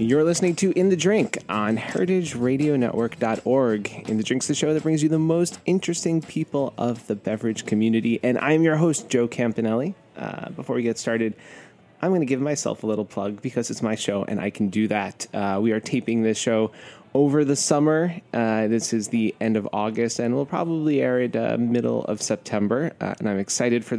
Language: English